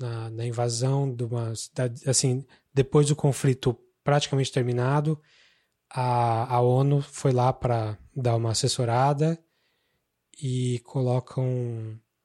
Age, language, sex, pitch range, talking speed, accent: 20-39, Portuguese, male, 125-150 Hz, 110 wpm, Brazilian